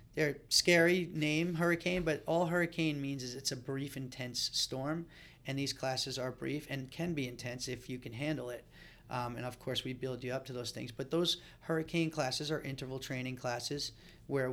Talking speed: 200 wpm